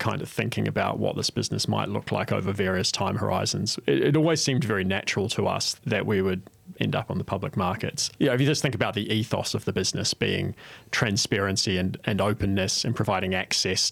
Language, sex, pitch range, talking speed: English, male, 95-125 Hz, 205 wpm